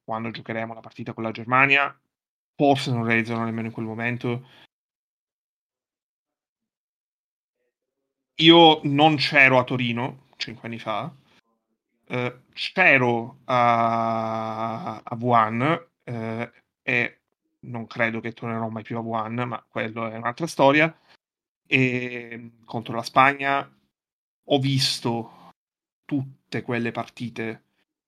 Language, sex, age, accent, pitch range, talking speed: Italian, male, 30-49, native, 115-125 Hz, 110 wpm